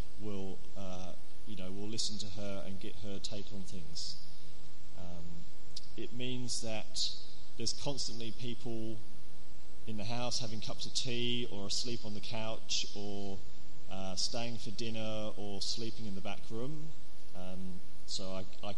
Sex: male